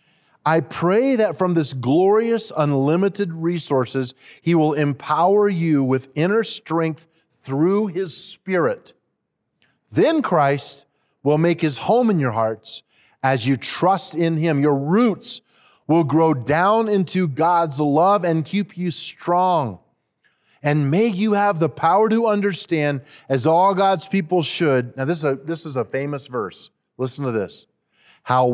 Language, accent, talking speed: English, American, 145 wpm